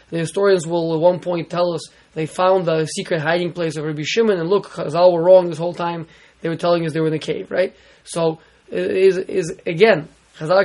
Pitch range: 165-205 Hz